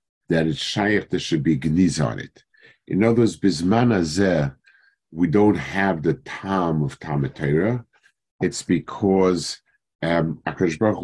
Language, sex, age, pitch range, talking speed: English, male, 50-69, 80-120 Hz, 125 wpm